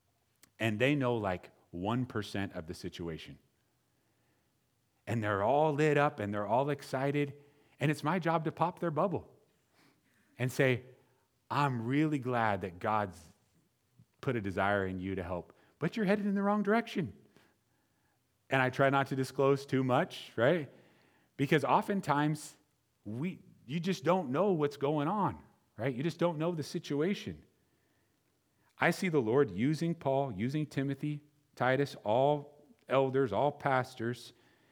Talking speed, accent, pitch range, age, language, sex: 145 wpm, American, 105-145 Hz, 40-59, English, male